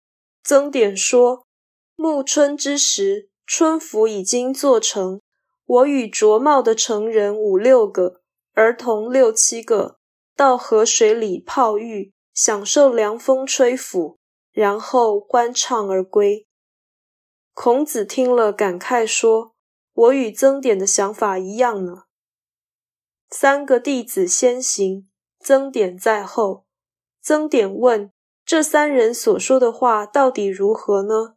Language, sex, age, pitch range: Chinese, female, 20-39, 210-275 Hz